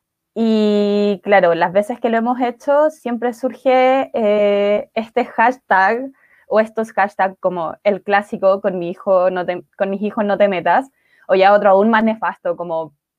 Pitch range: 200-260 Hz